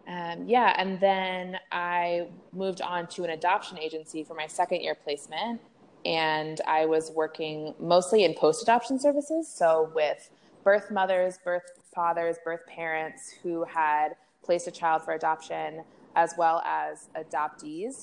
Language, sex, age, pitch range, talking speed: English, female, 20-39, 155-185 Hz, 145 wpm